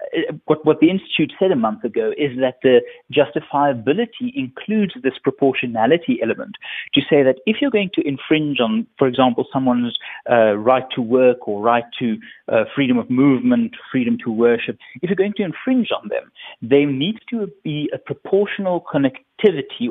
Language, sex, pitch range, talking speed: English, male, 120-165 Hz, 170 wpm